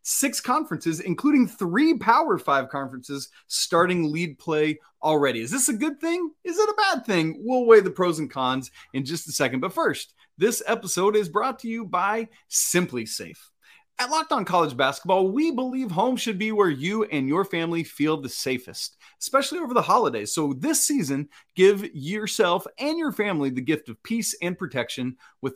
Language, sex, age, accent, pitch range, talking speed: English, male, 30-49, American, 140-215 Hz, 185 wpm